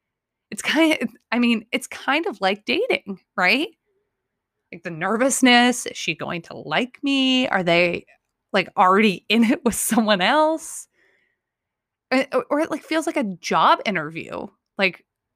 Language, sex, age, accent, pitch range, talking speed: English, female, 20-39, American, 195-280 Hz, 150 wpm